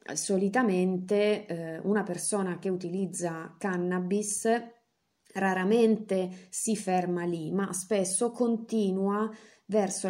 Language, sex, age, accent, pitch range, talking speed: Italian, female, 30-49, native, 165-205 Hz, 90 wpm